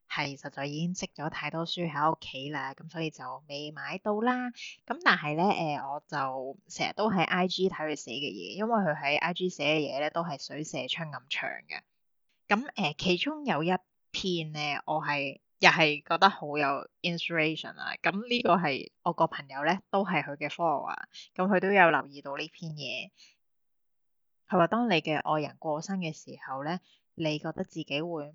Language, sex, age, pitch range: Chinese, female, 20-39, 150-185 Hz